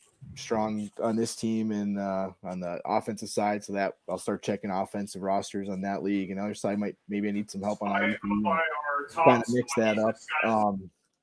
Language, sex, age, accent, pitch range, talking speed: English, male, 20-39, American, 105-125 Hz, 200 wpm